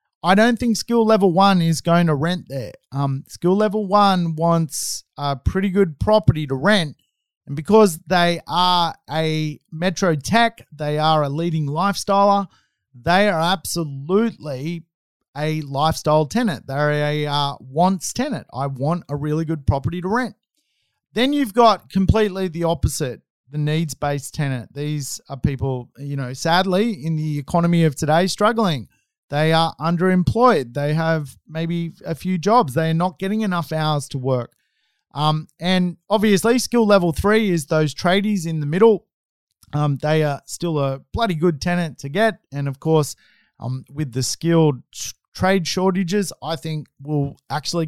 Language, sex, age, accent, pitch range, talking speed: English, male, 30-49, Australian, 145-190 Hz, 160 wpm